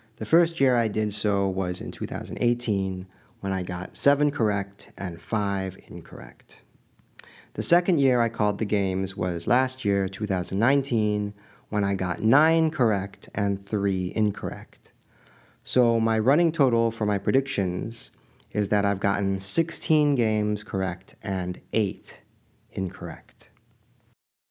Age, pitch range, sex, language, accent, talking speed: 40-59, 100-130 Hz, male, English, American, 130 wpm